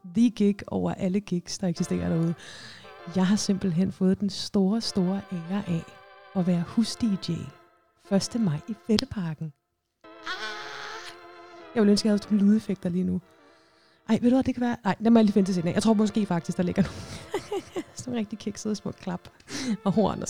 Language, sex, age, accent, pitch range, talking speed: Danish, female, 30-49, native, 185-230 Hz, 190 wpm